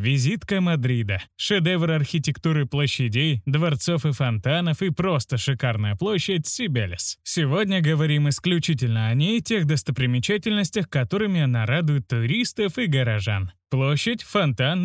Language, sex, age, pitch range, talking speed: Russian, male, 20-39, 130-175 Hz, 115 wpm